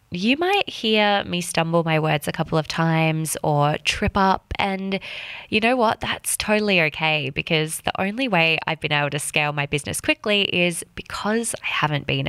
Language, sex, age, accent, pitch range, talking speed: English, female, 20-39, Australian, 150-190 Hz, 185 wpm